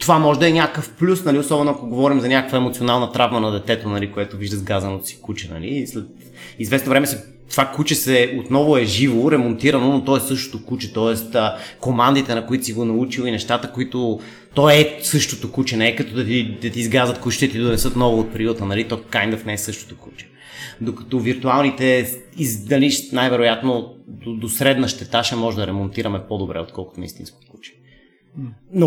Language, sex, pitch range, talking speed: Bulgarian, male, 115-140 Hz, 200 wpm